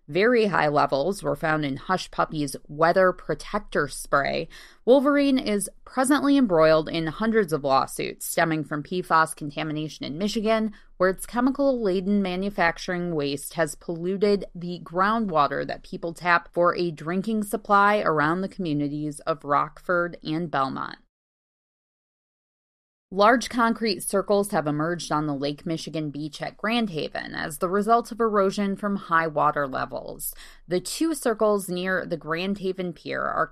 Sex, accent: female, American